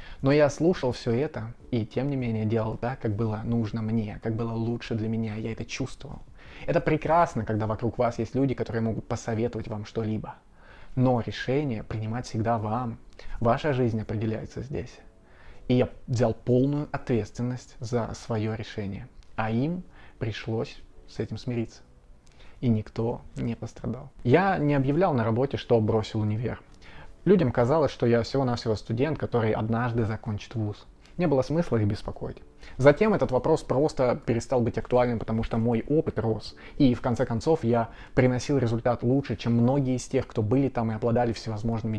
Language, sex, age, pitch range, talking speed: Russian, male, 20-39, 110-125 Hz, 165 wpm